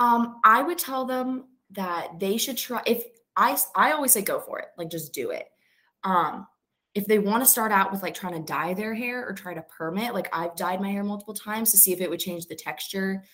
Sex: female